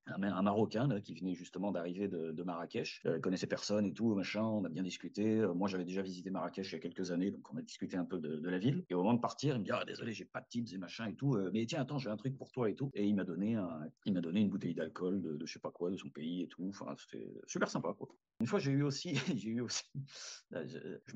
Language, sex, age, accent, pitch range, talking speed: French, male, 40-59, French, 95-130 Hz, 310 wpm